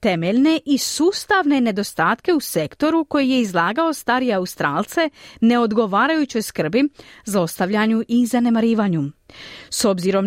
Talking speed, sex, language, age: 110 wpm, female, Croatian, 30-49